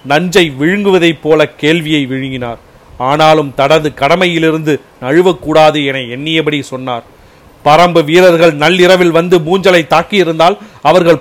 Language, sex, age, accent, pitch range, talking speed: Tamil, male, 40-59, native, 145-180 Hz, 100 wpm